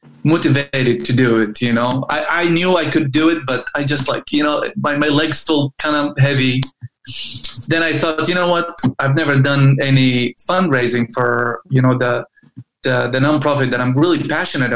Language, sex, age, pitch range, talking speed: English, male, 20-39, 125-150 Hz, 195 wpm